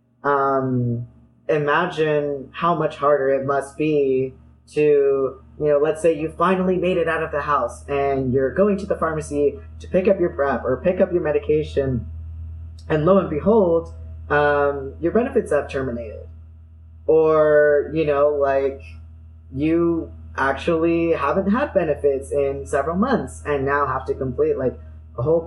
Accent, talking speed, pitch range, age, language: American, 155 wpm, 120-150 Hz, 20-39, English